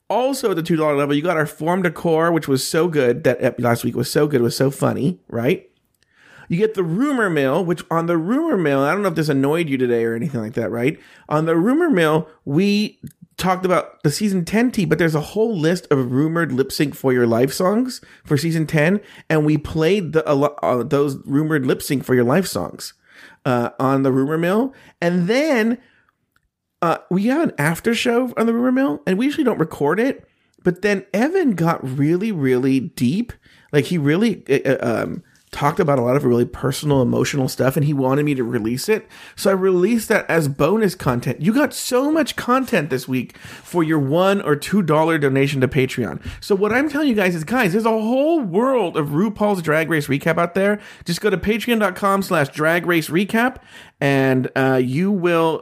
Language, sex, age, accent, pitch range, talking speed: English, male, 30-49, American, 140-205 Hz, 205 wpm